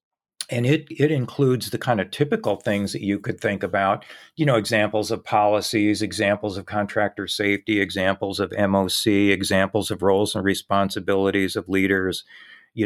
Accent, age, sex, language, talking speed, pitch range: American, 40-59, male, English, 160 wpm, 100-120 Hz